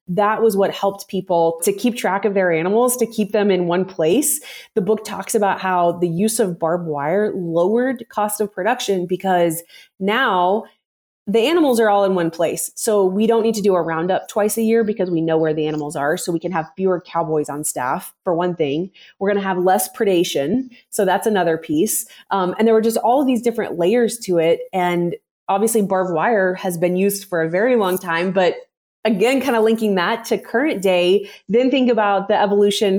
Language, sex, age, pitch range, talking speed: English, female, 30-49, 175-210 Hz, 215 wpm